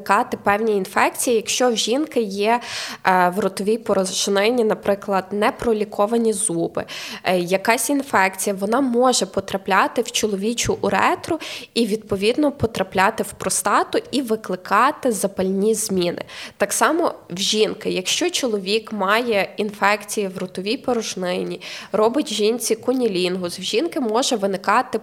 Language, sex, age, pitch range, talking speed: Ukrainian, female, 20-39, 200-240 Hz, 115 wpm